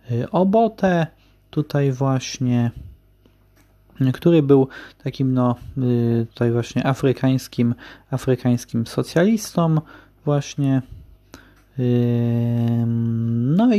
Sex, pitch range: male, 120-150 Hz